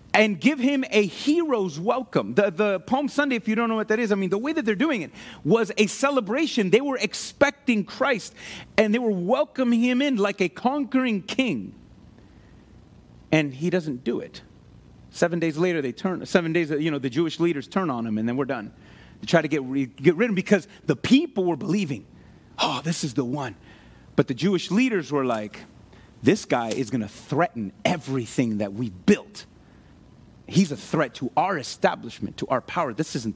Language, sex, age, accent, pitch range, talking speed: English, male, 30-49, American, 170-275 Hz, 200 wpm